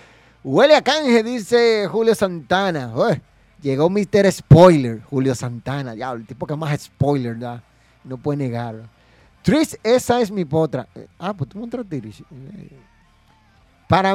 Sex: male